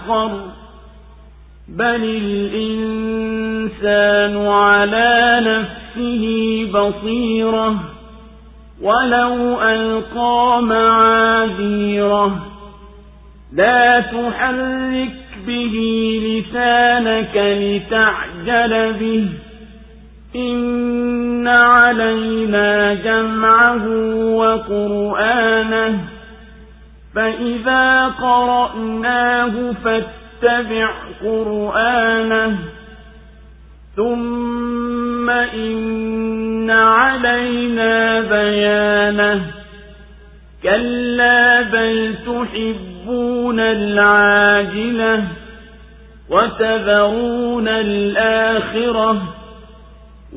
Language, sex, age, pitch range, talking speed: Swahili, male, 50-69, 205-235 Hz, 40 wpm